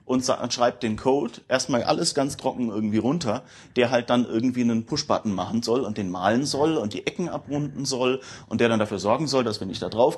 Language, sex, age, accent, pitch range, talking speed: German, male, 30-49, German, 105-130 Hz, 225 wpm